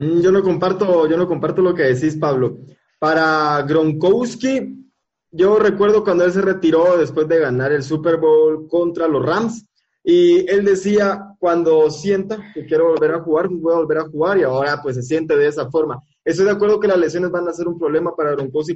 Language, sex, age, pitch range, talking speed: Spanish, male, 20-39, 155-210 Hz, 200 wpm